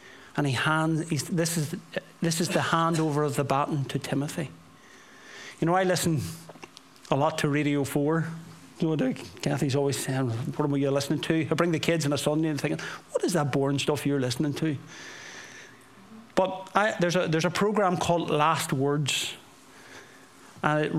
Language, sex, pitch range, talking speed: English, male, 145-175 Hz, 185 wpm